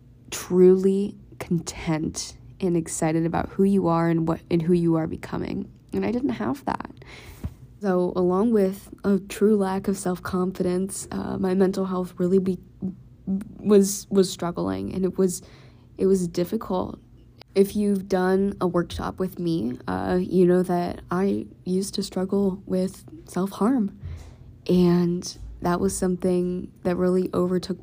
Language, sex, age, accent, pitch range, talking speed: English, female, 20-39, American, 170-190 Hz, 140 wpm